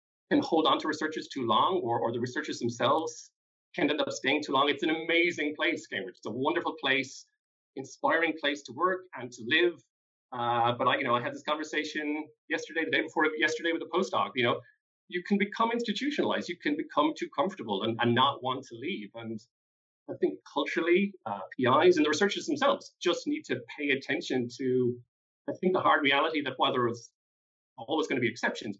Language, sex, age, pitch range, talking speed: English, male, 30-49, 135-205 Hz, 200 wpm